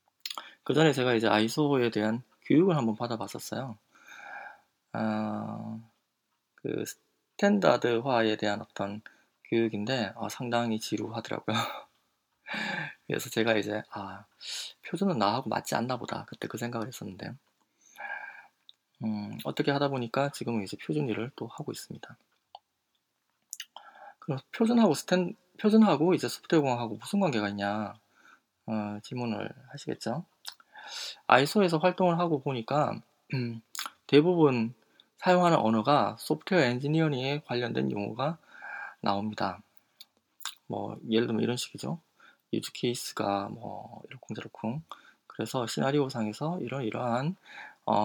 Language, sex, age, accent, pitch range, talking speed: English, male, 20-39, Korean, 110-150 Hz, 100 wpm